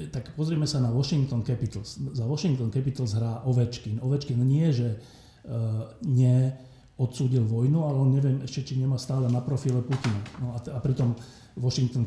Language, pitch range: Slovak, 115-135 Hz